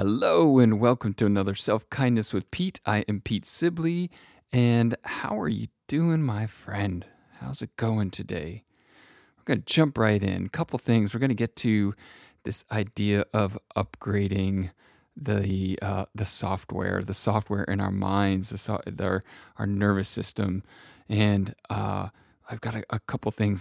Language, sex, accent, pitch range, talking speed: English, male, American, 95-115 Hz, 160 wpm